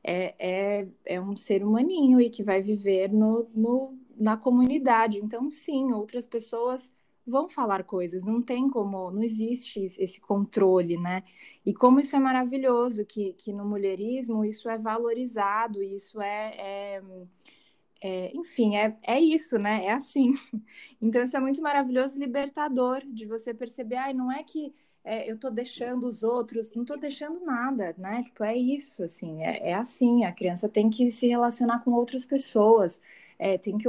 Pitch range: 205-255 Hz